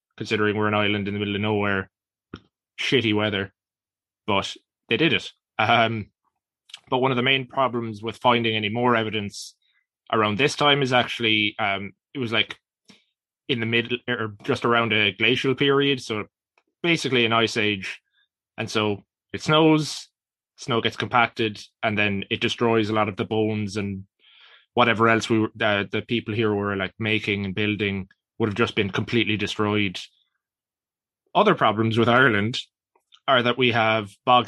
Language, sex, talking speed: English, male, 165 wpm